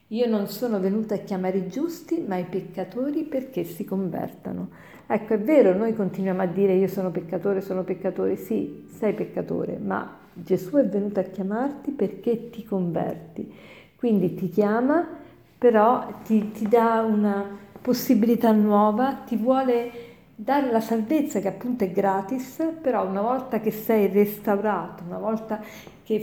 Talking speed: 150 wpm